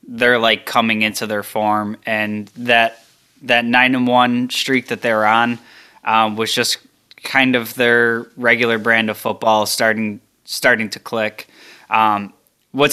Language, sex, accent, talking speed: English, male, American, 150 wpm